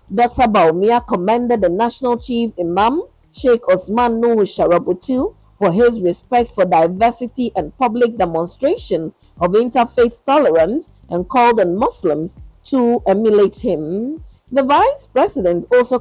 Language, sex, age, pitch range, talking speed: English, female, 50-69, 195-250 Hz, 125 wpm